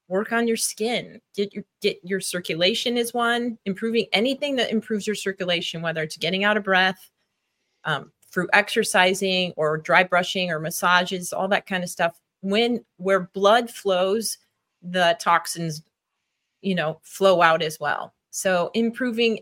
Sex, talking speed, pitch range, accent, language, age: female, 155 wpm, 180-220 Hz, American, English, 30-49